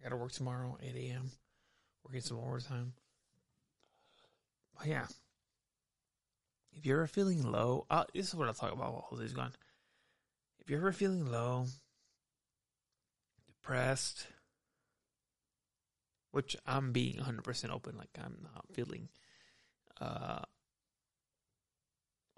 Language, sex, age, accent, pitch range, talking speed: English, male, 20-39, American, 110-135 Hz, 115 wpm